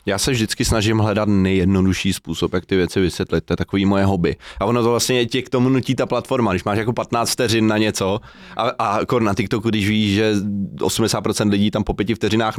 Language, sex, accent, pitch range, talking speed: Czech, male, native, 95-120 Hz, 225 wpm